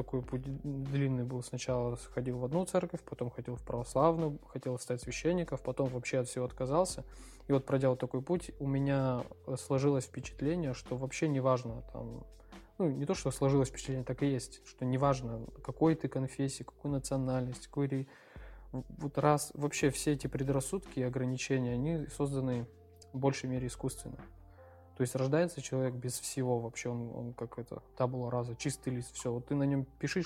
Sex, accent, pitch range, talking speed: male, native, 125-140 Hz, 175 wpm